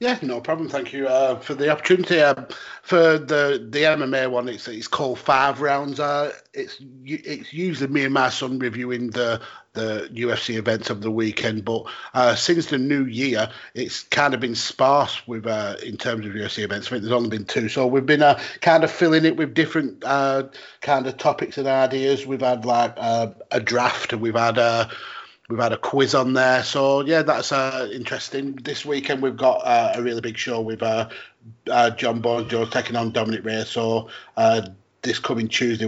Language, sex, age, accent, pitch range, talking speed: English, male, 30-49, British, 115-145 Hz, 205 wpm